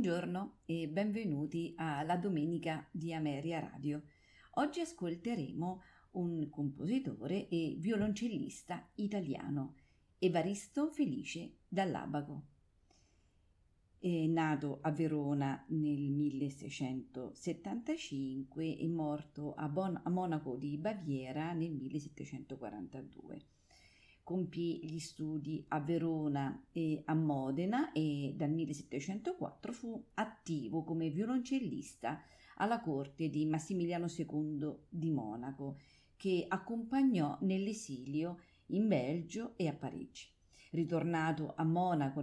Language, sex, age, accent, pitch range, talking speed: Italian, female, 40-59, native, 150-200 Hz, 95 wpm